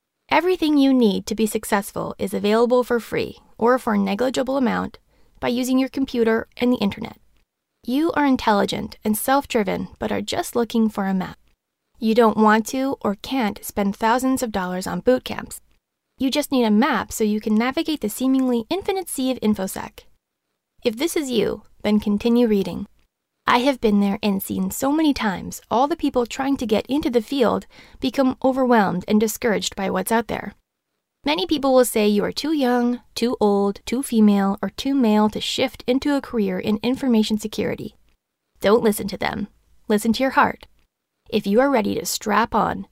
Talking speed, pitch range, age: 185 wpm, 215-265 Hz, 20-39